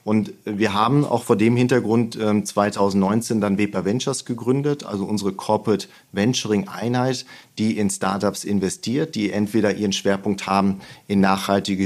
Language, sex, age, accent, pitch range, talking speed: German, male, 40-59, German, 100-120 Hz, 140 wpm